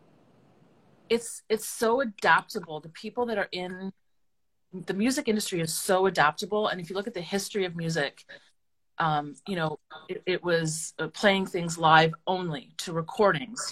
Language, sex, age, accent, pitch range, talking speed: English, female, 30-49, American, 150-190 Hz, 160 wpm